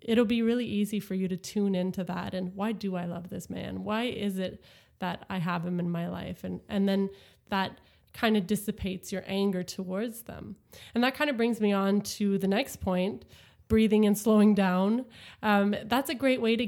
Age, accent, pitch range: 20-39, American, 185-215 Hz